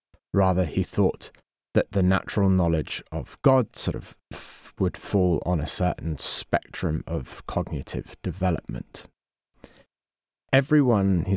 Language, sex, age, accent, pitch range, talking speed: English, male, 30-49, British, 85-105 Hz, 120 wpm